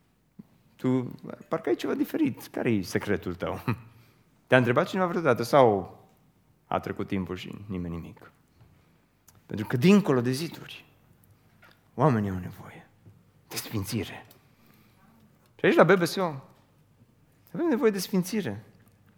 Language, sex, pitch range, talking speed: Romanian, male, 100-130 Hz, 115 wpm